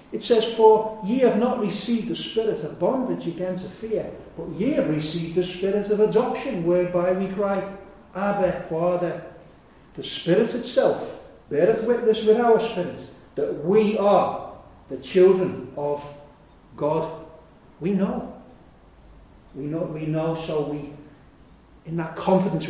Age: 40-59